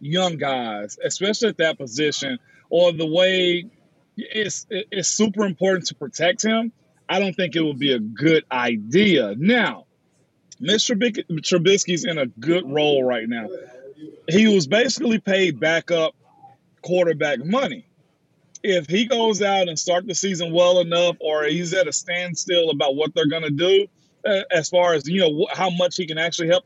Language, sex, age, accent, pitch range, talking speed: English, male, 30-49, American, 160-200 Hz, 170 wpm